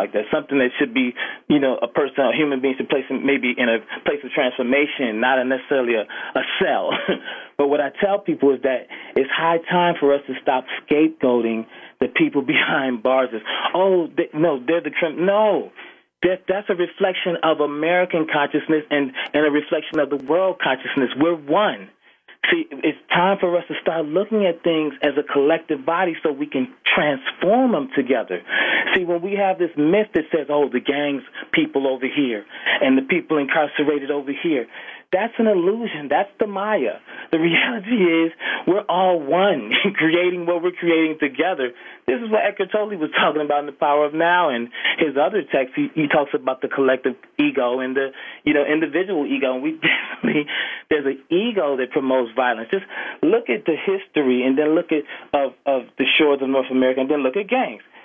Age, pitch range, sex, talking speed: 30-49, 140-180 Hz, male, 195 wpm